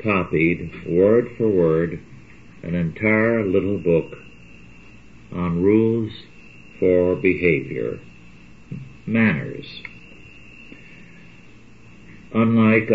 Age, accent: 60-79, American